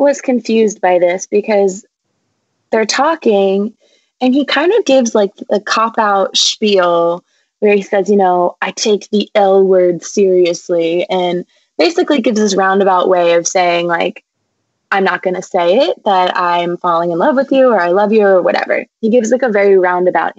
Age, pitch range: 20-39, 190-255 Hz